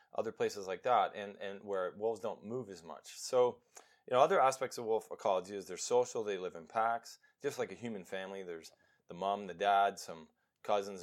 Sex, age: male, 30-49